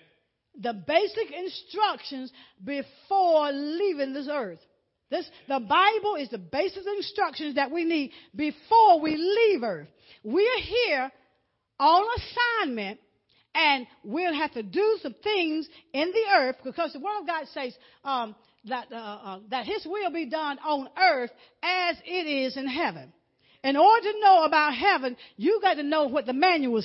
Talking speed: 160 wpm